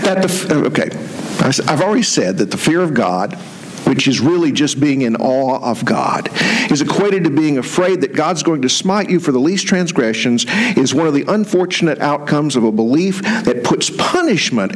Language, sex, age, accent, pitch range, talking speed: English, male, 50-69, American, 140-205 Hz, 185 wpm